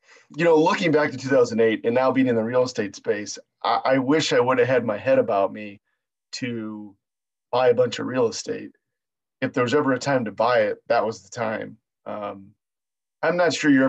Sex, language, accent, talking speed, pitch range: male, English, American, 215 wpm, 110-135 Hz